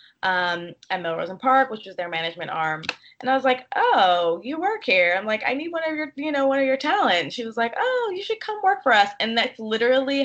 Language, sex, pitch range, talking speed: English, female, 175-245 Hz, 260 wpm